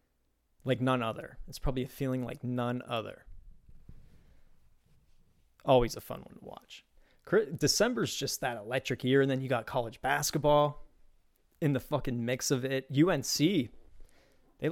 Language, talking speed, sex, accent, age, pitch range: English, 145 wpm, male, American, 30-49, 115-150 Hz